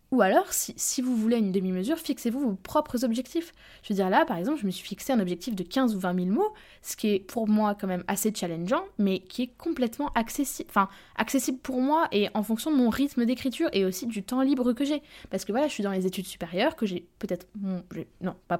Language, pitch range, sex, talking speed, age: French, 185-230 Hz, female, 250 wpm, 20-39